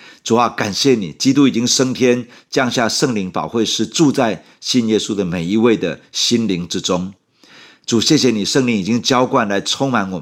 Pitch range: 90-120 Hz